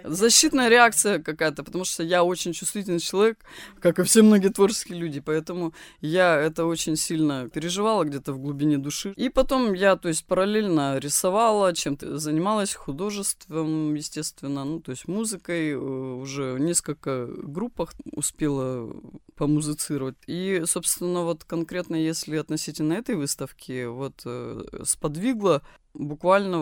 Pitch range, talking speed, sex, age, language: 145-185 Hz, 130 wpm, female, 20-39, Russian